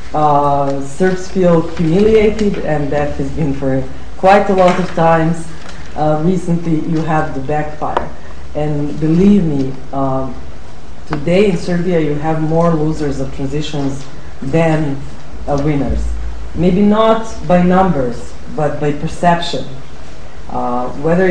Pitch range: 140-175 Hz